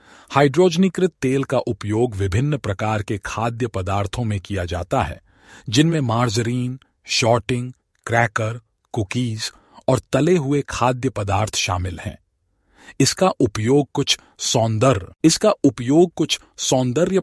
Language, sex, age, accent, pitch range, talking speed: Hindi, male, 40-59, native, 105-145 Hz, 115 wpm